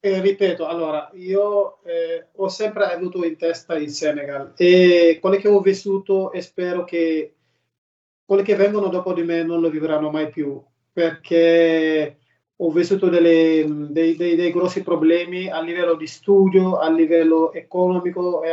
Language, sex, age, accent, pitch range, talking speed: Italian, male, 40-59, native, 160-195 Hz, 155 wpm